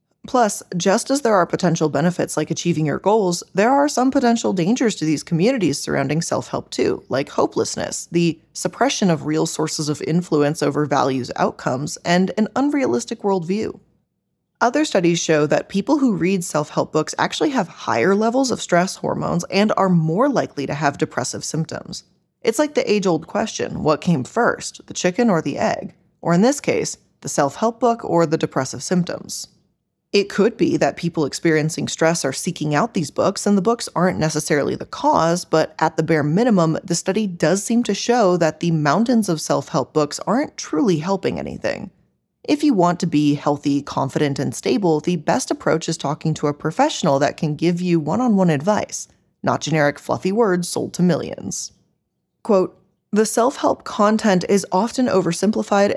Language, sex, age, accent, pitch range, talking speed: English, female, 20-39, American, 155-210 Hz, 175 wpm